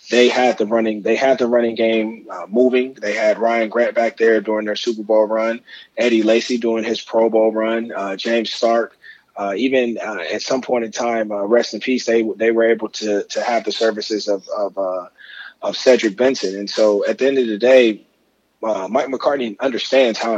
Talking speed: 210 wpm